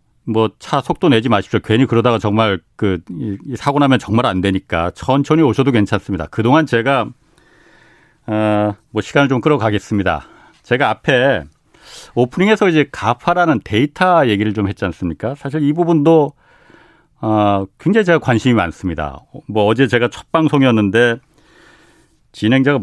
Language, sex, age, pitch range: Korean, male, 40-59, 100-145 Hz